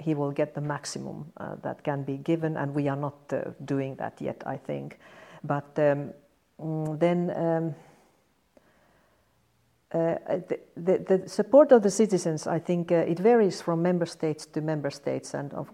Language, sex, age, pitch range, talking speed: English, female, 50-69, 145-180 Hz, 170 wpm